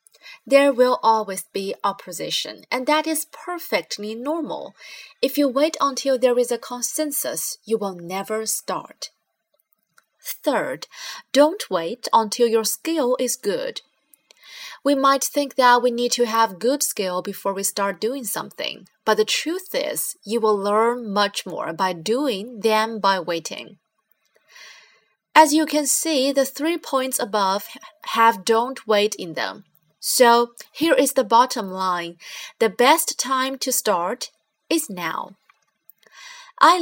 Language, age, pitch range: Chinese, 20-39, 210-280 Hz